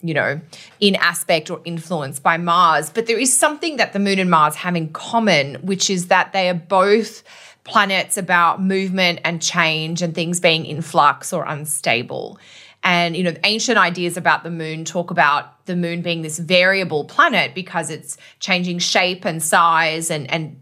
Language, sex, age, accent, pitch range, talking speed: English, female, 20-39, Australian, 165-195 Hz, 180 wpm